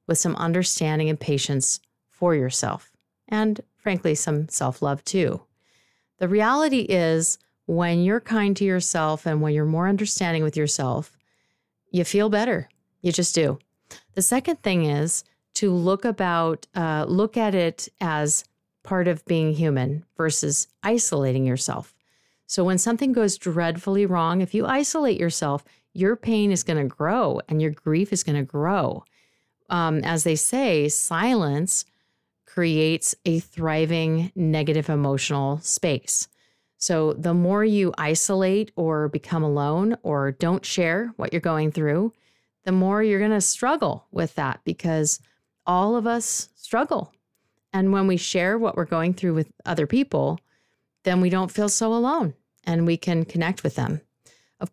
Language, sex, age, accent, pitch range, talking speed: English, female, 40-59, American, 155-200 Hz, 150 wpm